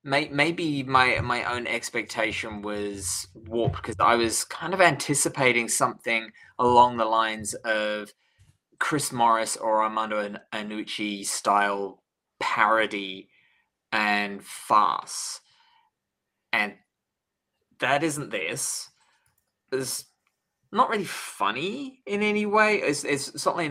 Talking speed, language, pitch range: 105 wpm, English, 105-140 Hz